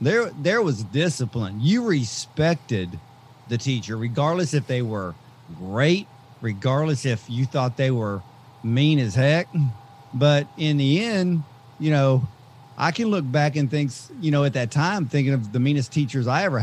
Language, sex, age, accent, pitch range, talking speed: English, male, 40-59, American, 125-150 Hz, 165 wpm